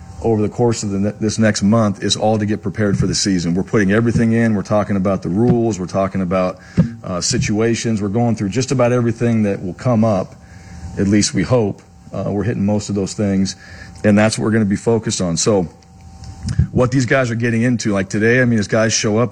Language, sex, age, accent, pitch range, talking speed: English, male, 40-59, American, 95-115 Hz, 230 wpm